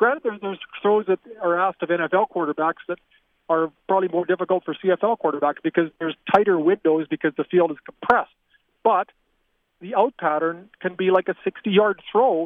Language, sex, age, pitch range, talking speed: English, male, 40-59, 165-200 Hz, 175 wpm